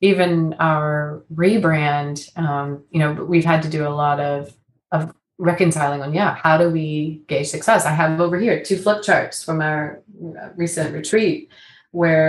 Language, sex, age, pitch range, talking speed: English, female, 30-49, 150-170 Hz, 175 wpm